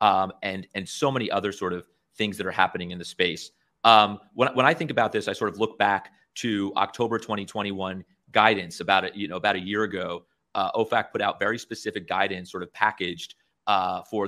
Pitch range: 100-130 Hz